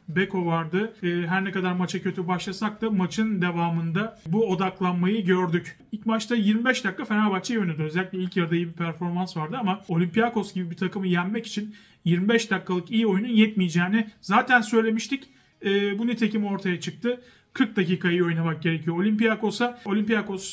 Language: Turkish